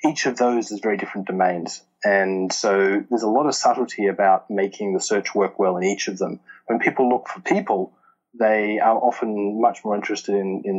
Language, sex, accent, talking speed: English, male, Australian, 205 wpm